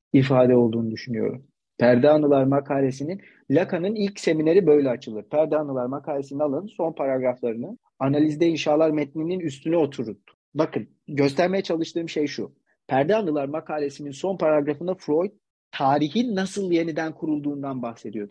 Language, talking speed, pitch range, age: Turkish, 125 wpm, 135-190 Hz, 40-59